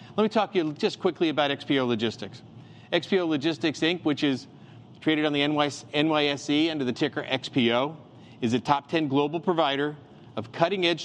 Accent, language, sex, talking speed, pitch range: American, English, male, 170 wpm, 120-160 Hz